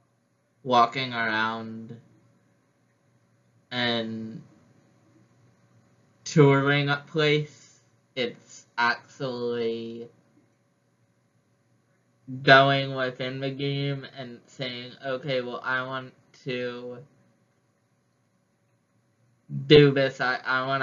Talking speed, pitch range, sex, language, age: 65 wpm, 125-150 Hz, male, English, 10-29